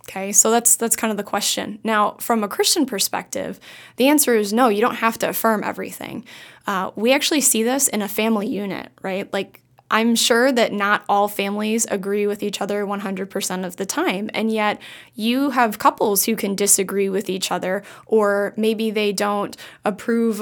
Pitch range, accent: 200-235 Hz, American